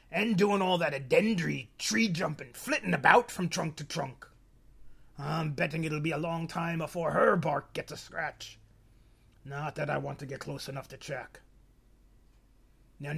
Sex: male